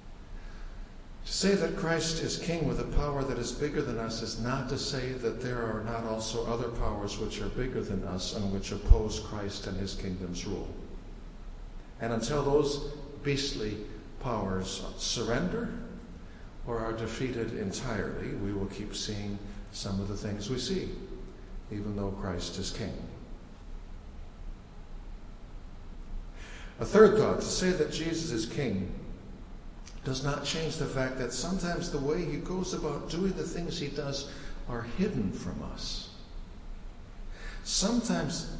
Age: 60-79